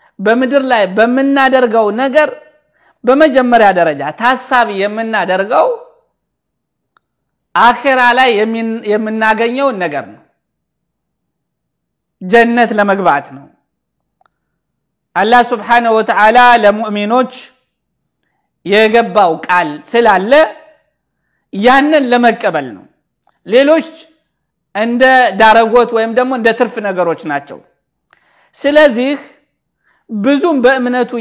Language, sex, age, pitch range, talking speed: Amharic, male, 50-69, 215-275 Hz, 30 wpm